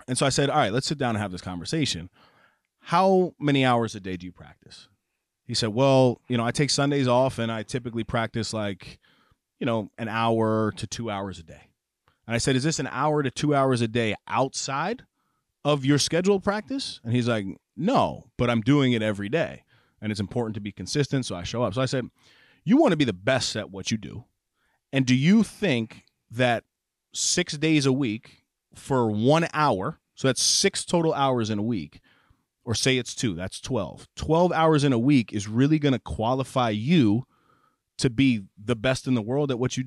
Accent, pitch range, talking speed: American, 115-150 Hz, 210 wpm